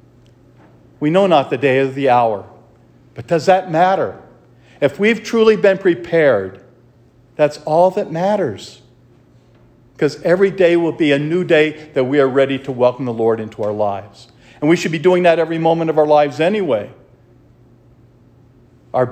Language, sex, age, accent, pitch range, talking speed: English, male, 50-69, American, 120-160 Hz, 165 wpm